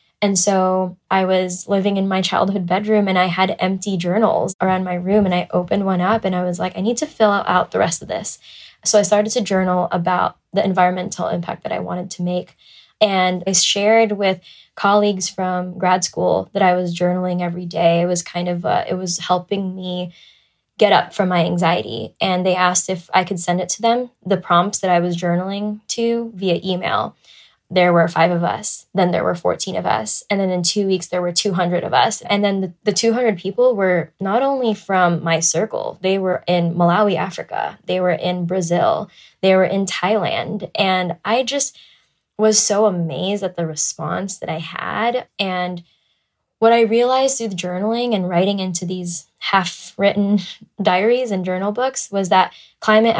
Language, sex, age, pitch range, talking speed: English, female, 10-29, 180-205 Hz, 195 wpm